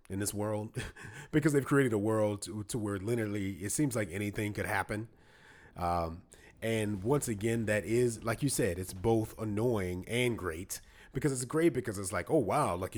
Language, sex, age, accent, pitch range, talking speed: English, male, 30-49, American, 90-115 Hz, 190 wpm